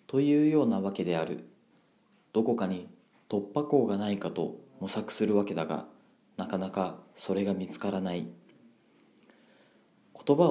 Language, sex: Japanese, male